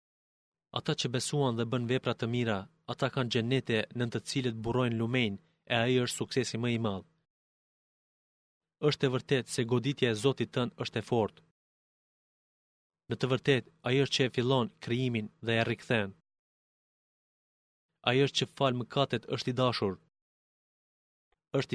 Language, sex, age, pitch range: Greek, male, 30-49, 115-130 Hz